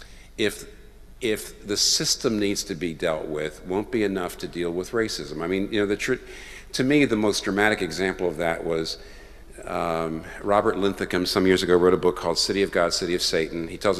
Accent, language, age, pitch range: American, English, 50-69, 90-115 Hz